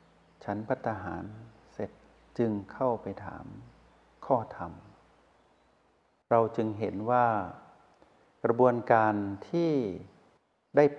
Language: Thai